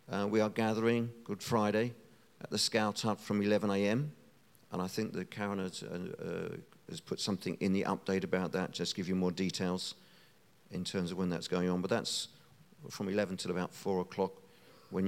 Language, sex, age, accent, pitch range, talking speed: English, male, 50-69, British, 95-115 Hz, 205 wpm